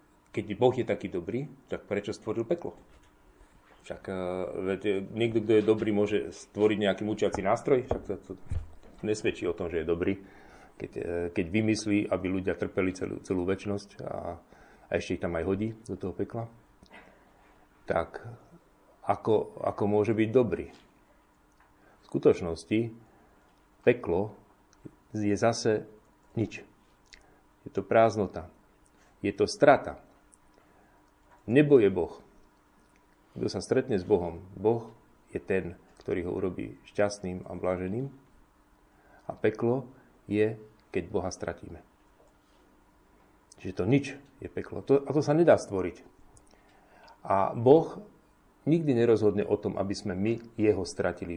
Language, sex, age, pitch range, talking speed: Slovak, male, 40-59, 95-115 Hz, 125 wpm